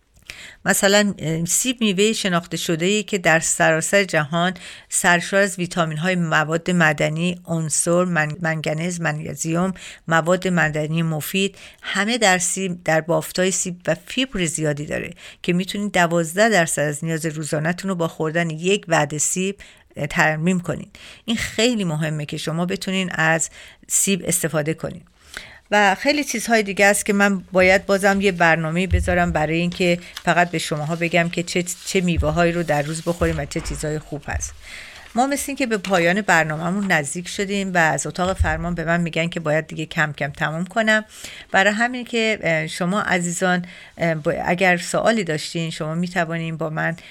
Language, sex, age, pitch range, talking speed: Persian, female, 50-69, 160-190 Hz, 155 wpm